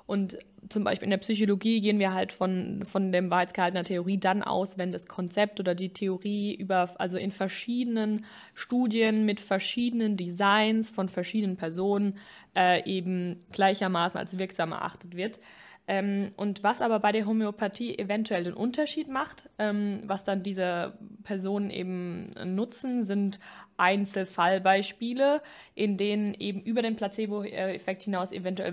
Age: 20-39